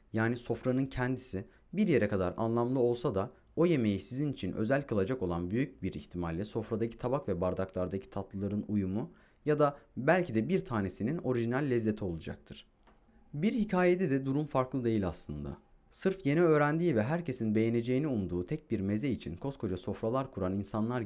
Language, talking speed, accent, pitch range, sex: Turkish, 160 wpm, native, 105-150 Hz, male